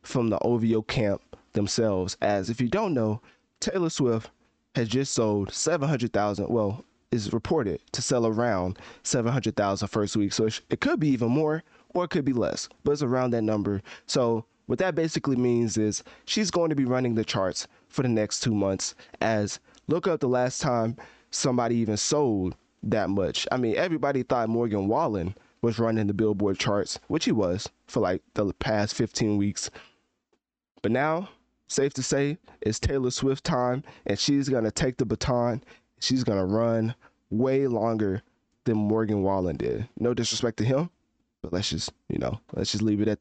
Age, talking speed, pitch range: 20-39, 185 wpm, 105-130 Hz